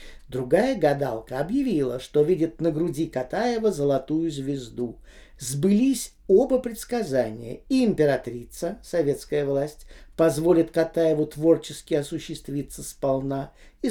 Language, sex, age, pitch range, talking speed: Russian, male, 50-69, 145-210 Hz, 100 wpm